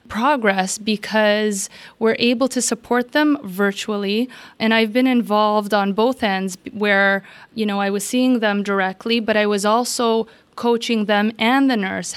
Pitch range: 200-235 Hz